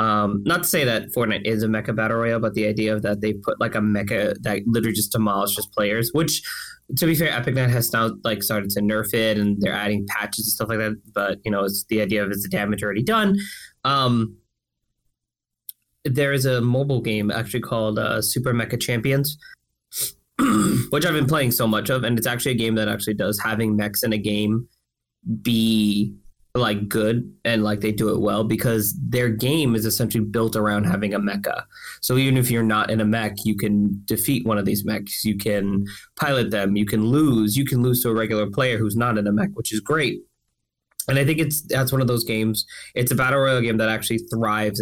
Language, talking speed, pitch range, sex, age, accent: English, 220 wpm, 105-125 Hz, male, 20-39, American